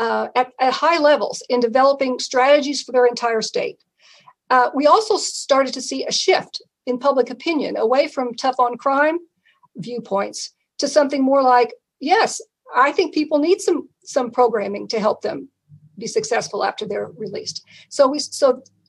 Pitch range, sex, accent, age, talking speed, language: 240-300 Hz, female, American, 50-69, 160 wpm, English